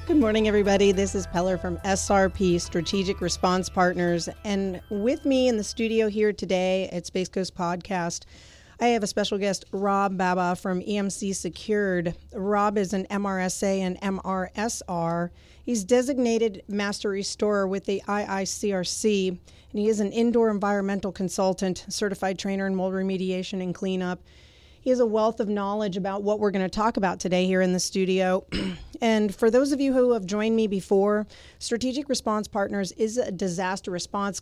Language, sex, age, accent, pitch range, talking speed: English, female, 40-59, American, 185-215 Hz, 165 wpm